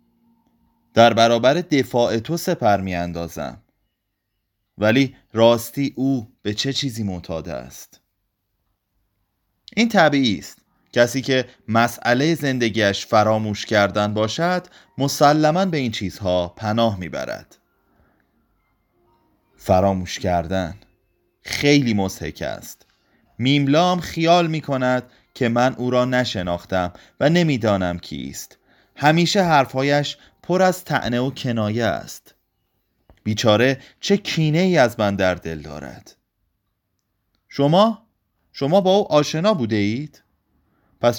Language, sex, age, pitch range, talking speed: Persian, male, 30-49, 100-145 Hz, 105 wpm